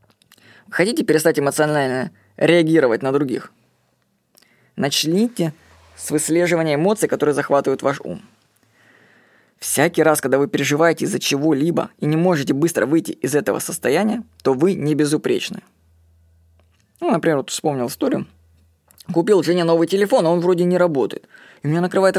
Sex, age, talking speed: female, 20-39, 130 wpm